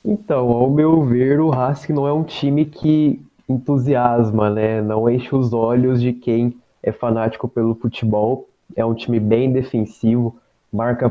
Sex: male